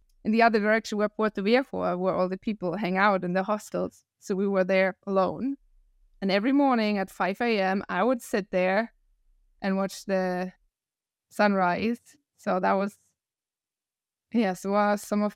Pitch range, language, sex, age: 185-230 Hz, English, female, 20-39